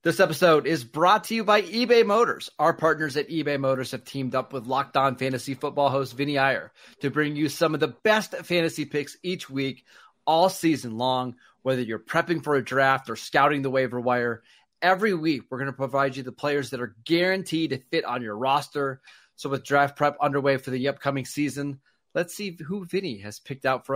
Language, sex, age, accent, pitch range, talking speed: English, male, 30-49, American, 130-155 Hz, 210 wpm